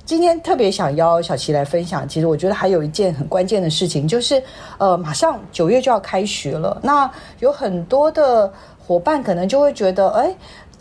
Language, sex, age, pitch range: Chinese, female, 40-59, 170-235 Hz